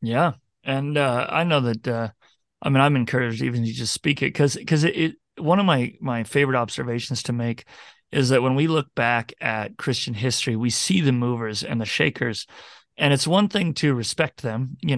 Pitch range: 120-140 Hz